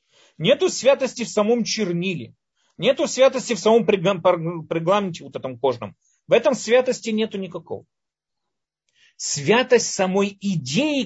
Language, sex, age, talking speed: Russian, male, 40-59, 115 wpm